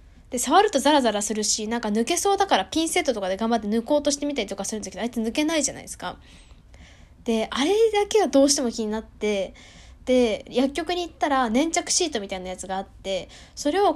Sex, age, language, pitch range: female, 10-29, Japanese, 210-305 Hz